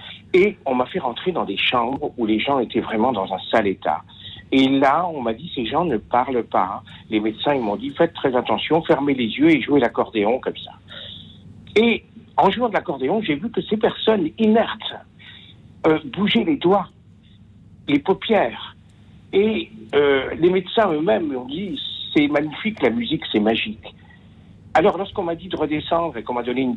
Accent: French